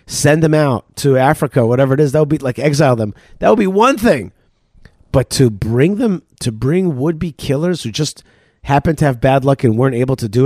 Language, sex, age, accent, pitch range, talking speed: English, male, 40-59, American, 125-160 Hz, 225 wpm